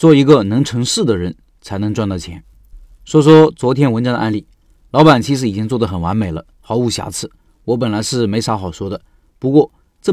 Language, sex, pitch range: Chinese, male, 105-145 Hz